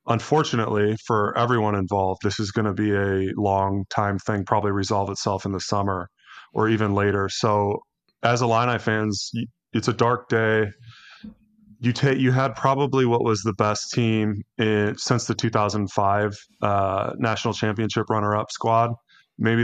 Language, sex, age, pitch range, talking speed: English, male, 20-39, 100-115 Hz, 155 wpm